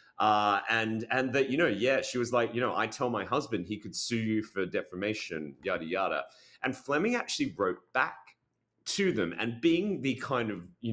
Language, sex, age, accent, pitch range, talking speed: English, male, 30-49, Australian, 90-120 Hz, 205 wpm